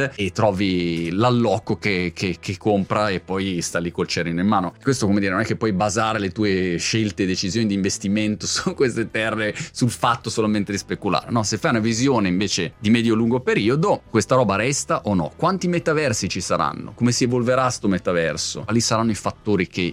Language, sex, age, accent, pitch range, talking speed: Italian, male, 30-49, native, 90-120 Hz, 200 wpm